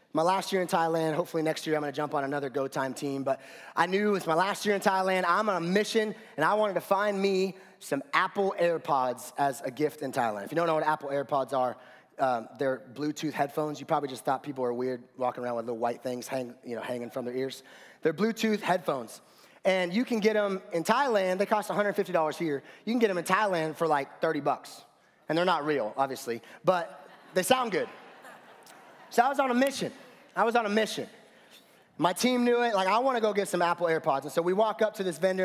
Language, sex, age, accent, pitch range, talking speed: English, male, 30-49, American, 150-210 Hz, 240 wpm